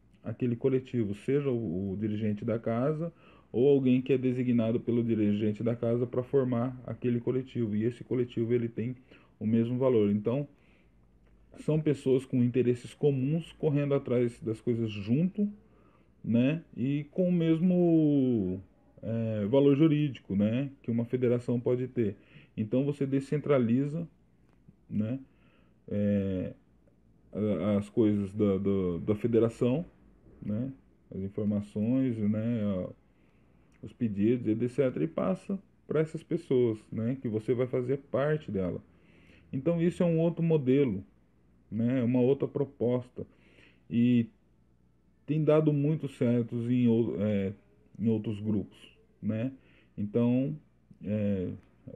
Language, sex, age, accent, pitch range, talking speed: Portuguese, male, 20-39, Brazilian, 105-135 Hz, 120 wpm